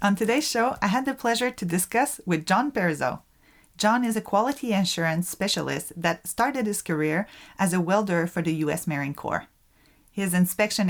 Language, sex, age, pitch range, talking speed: English, female, 40-59, 170-220 Hz, 175 wpm